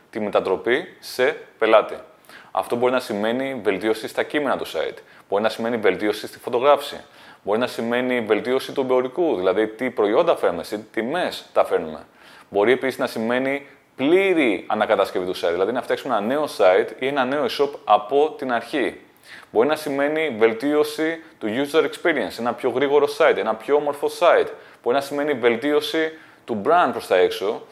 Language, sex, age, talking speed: Greek, male, 30-49, 170 wpm